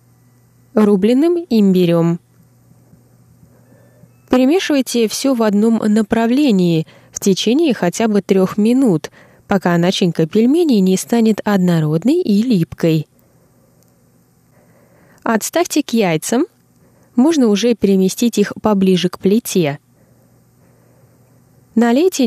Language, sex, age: Russian, female, 20-39